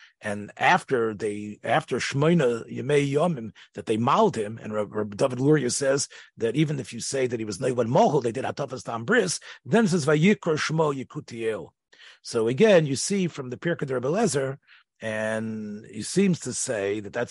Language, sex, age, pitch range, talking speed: English, male, 40-59, 115-170 Hz, 155 wpm